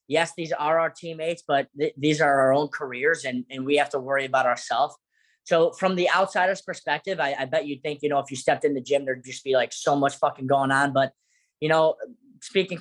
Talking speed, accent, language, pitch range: 240 wpm, American, English, 135-155 Hz